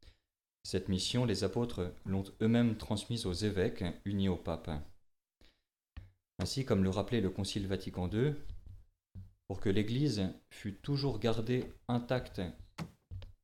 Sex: male